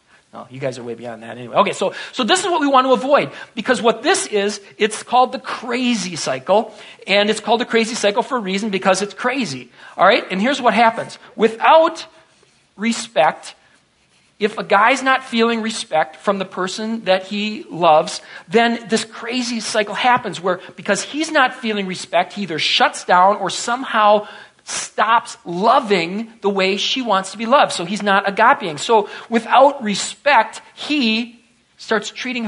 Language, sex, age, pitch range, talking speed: English, male, 40-59, 195-245 Hz, 175 wpm